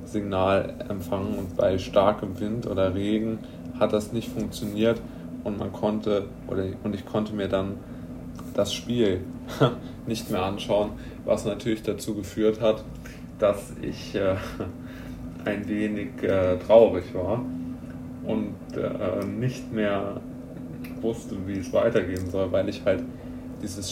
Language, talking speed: German, 130 wpm